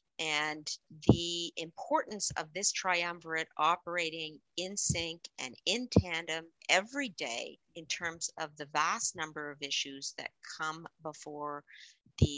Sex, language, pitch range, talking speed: female, English, 145-170 Hz, 125 wpm